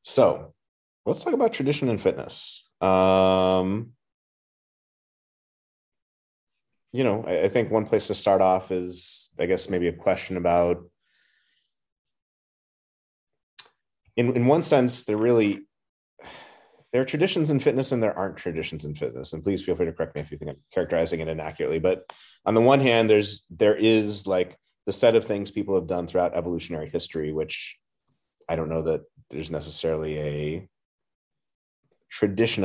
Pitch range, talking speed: 80-100 Hz, 155 wpm